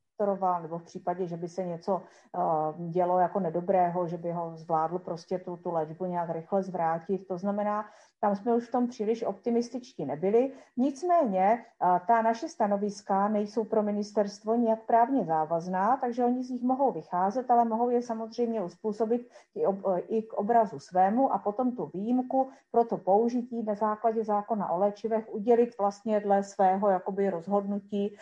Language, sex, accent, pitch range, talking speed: Czech, female, native, 185-220 Hz, 165 wpm